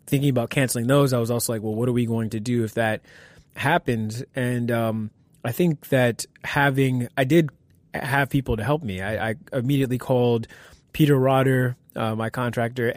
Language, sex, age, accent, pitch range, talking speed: English, male, 20-39, American, 115-130 Hz, 185 wpm